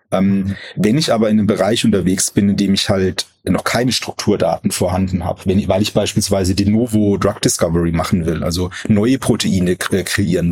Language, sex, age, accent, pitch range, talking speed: German, male, 30-49, German, 95-110 Hz, 185 wpm